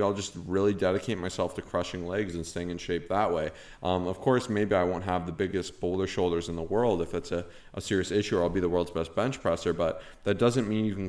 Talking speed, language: 260 wpm, English